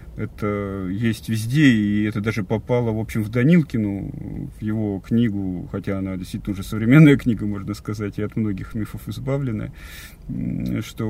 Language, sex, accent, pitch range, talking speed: Russian, male, native, 105-130 Hz, 150 wpm